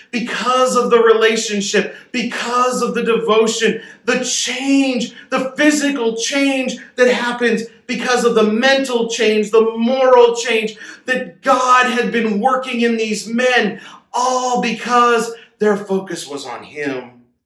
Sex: male